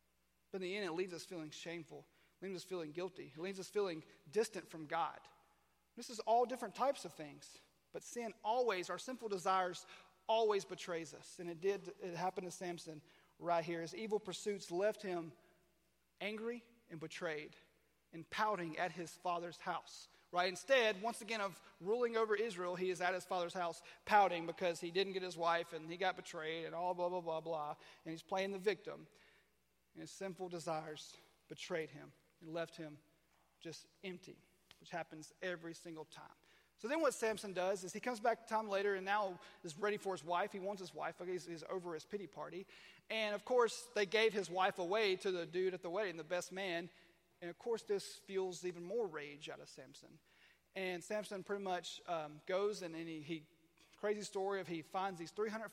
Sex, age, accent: male, 30-49, American